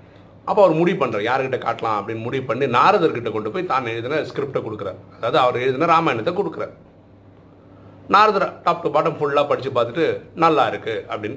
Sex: male